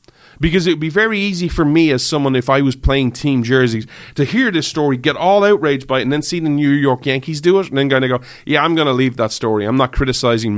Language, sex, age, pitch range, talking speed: English, male, 30-49, 125-165 Hz, 280 wpm